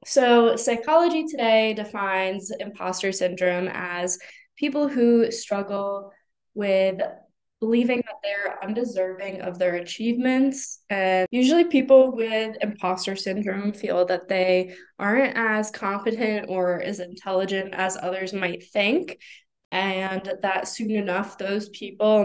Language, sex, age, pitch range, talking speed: English, female, 10-29, 185-220 Hz, 115 wpm